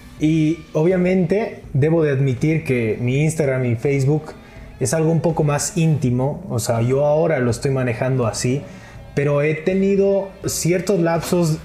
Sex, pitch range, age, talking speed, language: male, 130-170 Hz, 20-39, 150 wpm, Spanish